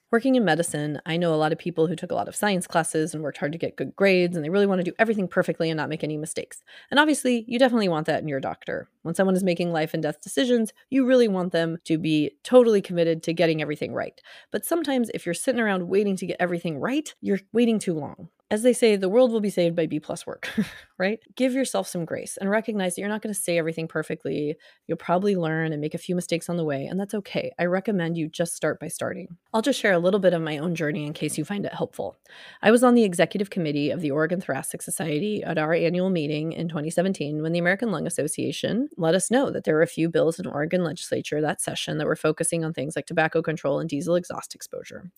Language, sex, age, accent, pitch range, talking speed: English, female, 30-49, American, 160-205 Hz, 255 wpm